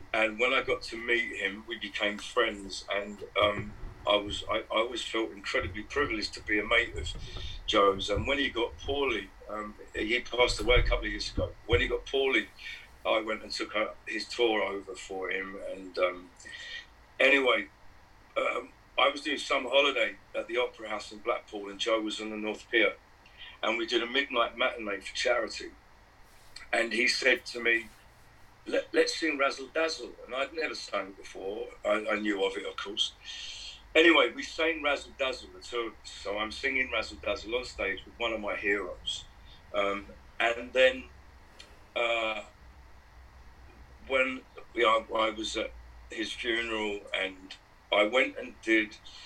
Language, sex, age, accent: English, male, 50-69, British